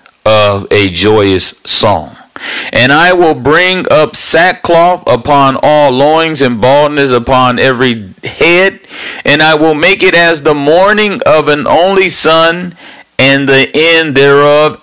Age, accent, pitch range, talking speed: 40-59, American, 125-180 Hz, 140 wpm